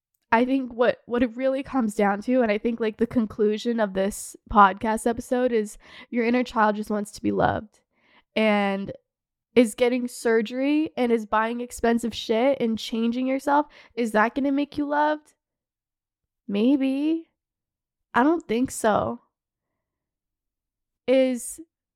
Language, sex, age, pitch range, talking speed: English, female, 10-29, 225-265 Hz, 145 wpm